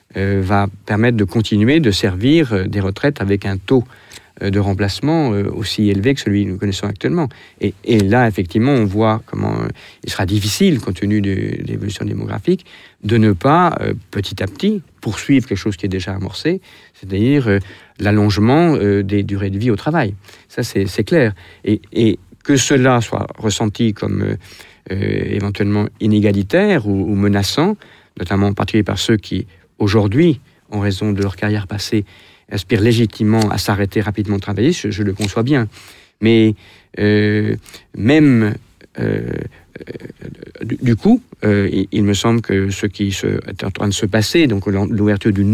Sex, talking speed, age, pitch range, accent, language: male, 180 wpm, 50-69, 100-120 Hz, French, French